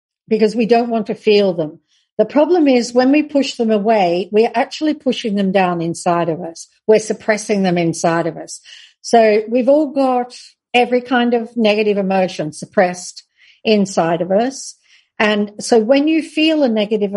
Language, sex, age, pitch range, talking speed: Spanish, female, 50-69, 200-255 Hz, 175 wpm